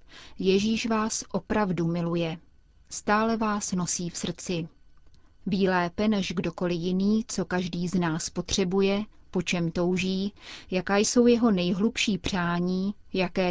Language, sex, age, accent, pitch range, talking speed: Czech, female, 30-49, native, 170-205 Hz, 120 wpm